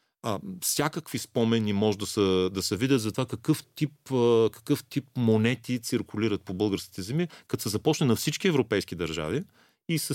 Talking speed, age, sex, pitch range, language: 170 wpm, 40-59, male, 100-140 Hz, Bulgarian